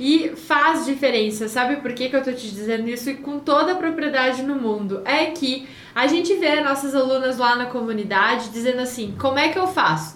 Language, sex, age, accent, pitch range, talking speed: Portuguese, female, 10-29, Brazilian, 255-320 Hz, 215 wpm